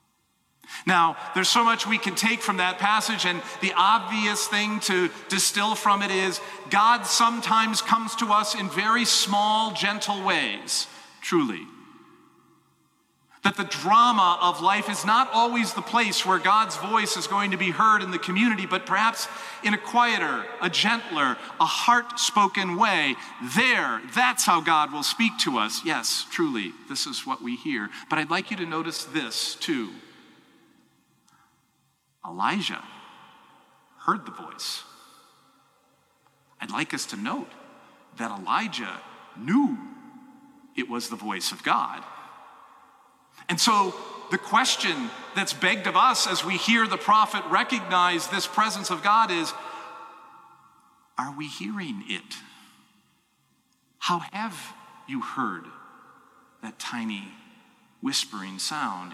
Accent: American